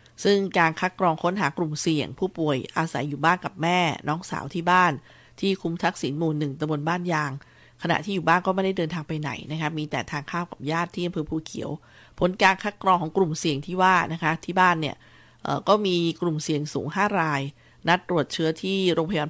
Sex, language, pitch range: female, Thai, 150-180 Hz